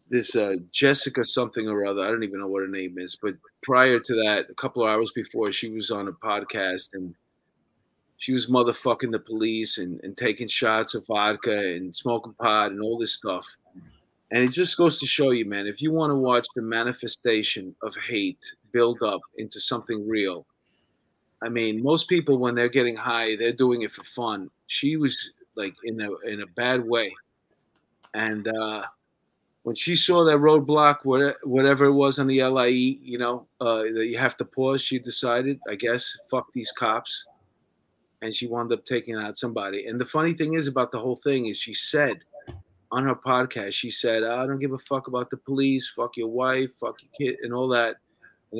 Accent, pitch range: American, 110-135 Hz